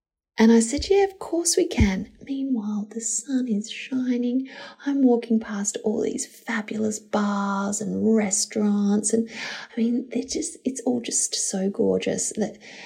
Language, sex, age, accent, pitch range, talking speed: English, female, 30-49, Australian, 190-255 Hz, 155 wpm